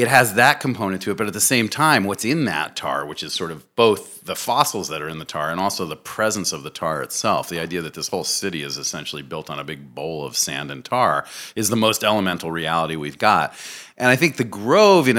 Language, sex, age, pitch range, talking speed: English, male, 40-59, 85-115 Hz, 255 wpm